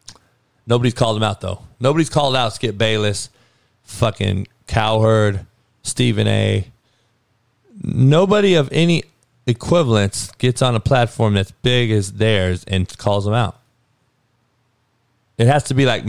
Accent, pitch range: American, 100-125 Hz